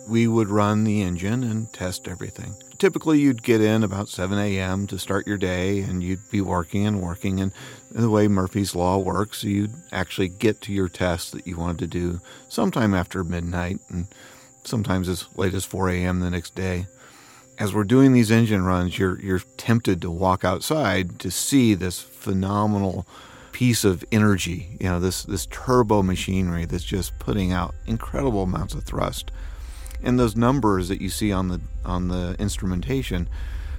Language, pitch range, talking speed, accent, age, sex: English, 85-105 Hz, 175 wpm, American, 40-59, male